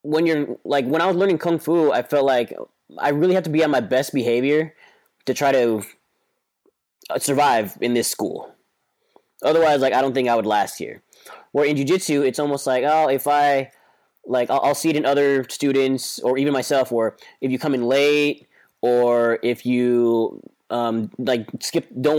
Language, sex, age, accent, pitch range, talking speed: English, male, 20-39, American, 125-150 Hz, 190 wpm